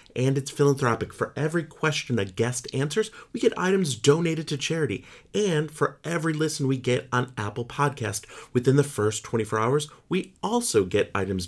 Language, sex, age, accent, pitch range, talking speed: English, male, 30-49, American, 115-150 Hz, 170 wpm